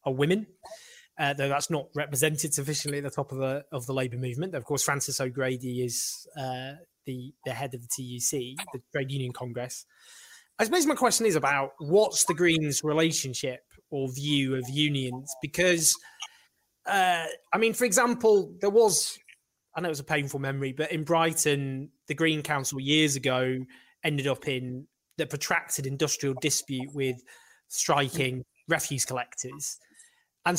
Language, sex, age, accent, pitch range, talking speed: English, male, 20-39, British, 135-185 Hz, 160 wpm